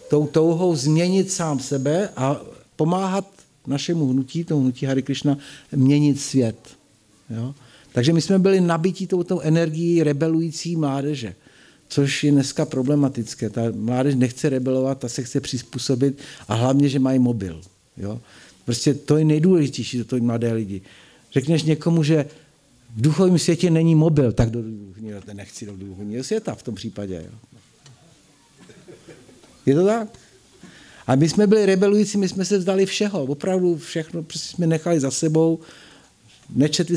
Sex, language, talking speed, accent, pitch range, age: male, Czech, 150 wpm, native, 130-165 Hz, 50-69